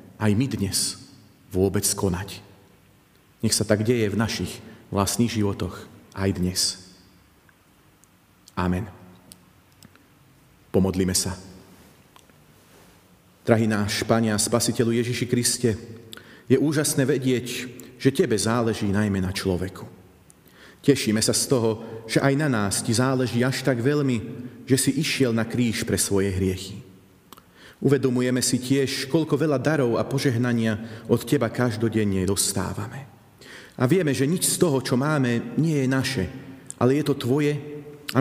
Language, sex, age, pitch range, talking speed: Slovak, male, 40-59, 95-130 Hz, 130 wpm